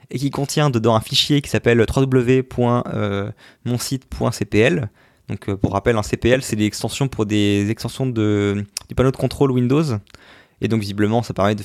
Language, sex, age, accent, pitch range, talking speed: French, male, 20-39, French, 105-130 Hz, 165 wpm